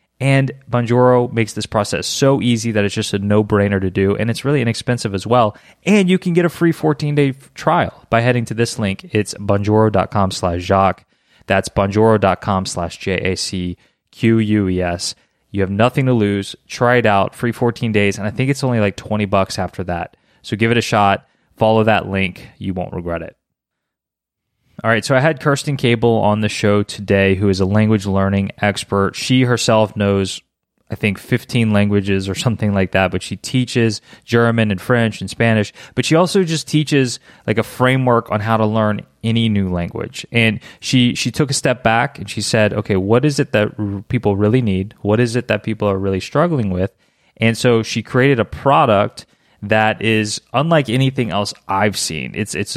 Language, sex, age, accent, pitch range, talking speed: English, male, 20-39, American, 100-125 Hz, 190 wpm